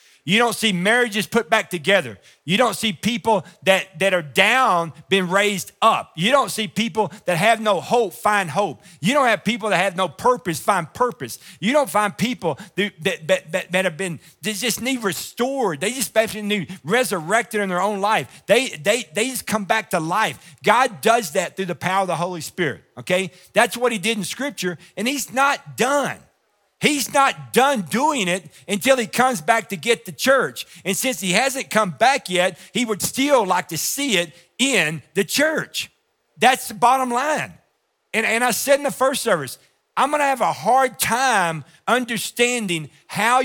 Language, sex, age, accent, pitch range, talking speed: English, male, 50-69, American, 175-235 Hz, 195 wpm